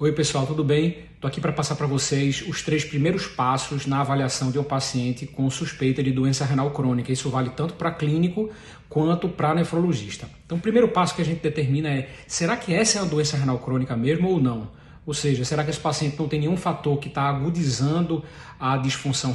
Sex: male